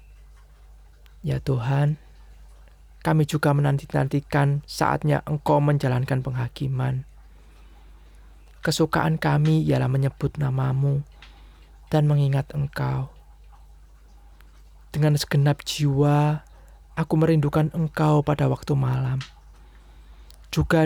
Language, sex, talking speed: Indonesian, male, 80 wpm